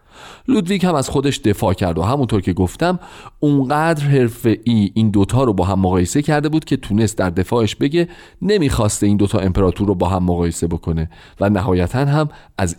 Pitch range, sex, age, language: 95-145 Hz, male, 40-59, Persian